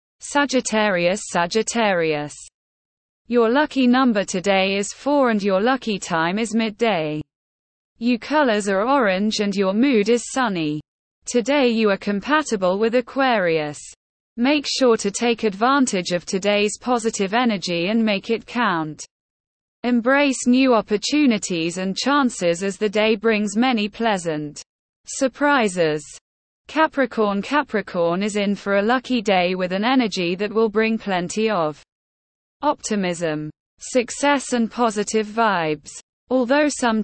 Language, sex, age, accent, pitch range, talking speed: English, female, 20-39, British, 190-245 Hz, 125 wpm